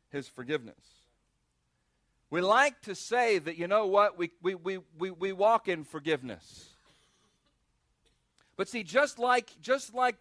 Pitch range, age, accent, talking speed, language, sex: 175-220 Hz, 40-59, American, 135 wpm, English, male